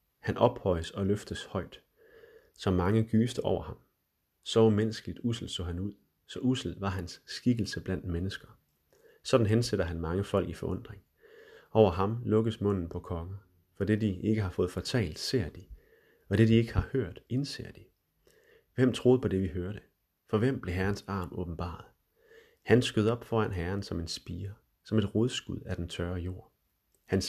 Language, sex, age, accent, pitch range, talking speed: Danish, male, 30-49, native, 90-120 Hz, 180 wpm